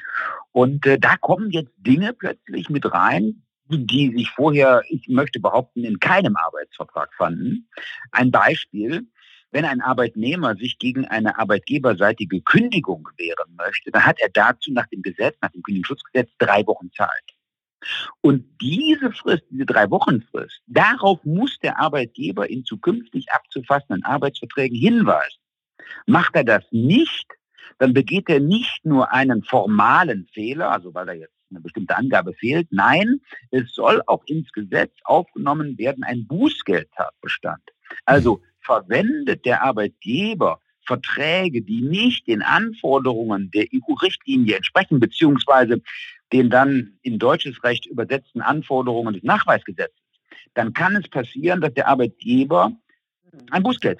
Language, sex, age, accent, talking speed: German, male, 50-69, German, 130 wpm